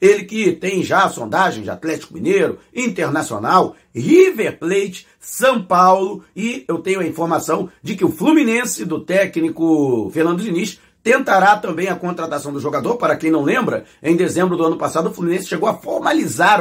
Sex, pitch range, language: male, 160-210 Hz, Portuguese